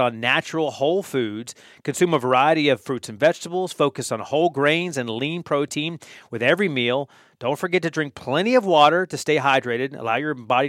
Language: English